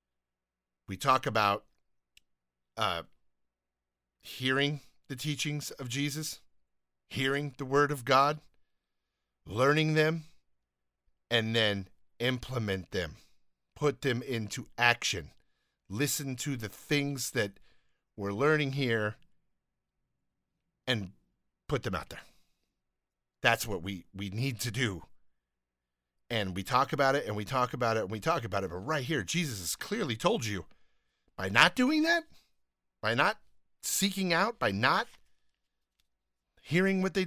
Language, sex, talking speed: English, male, 130 wpm